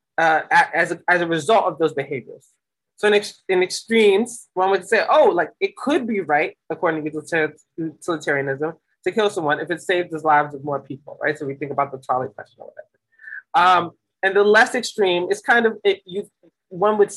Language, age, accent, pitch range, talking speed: English, 20-39, American, 155-200 Hz, 205 wpm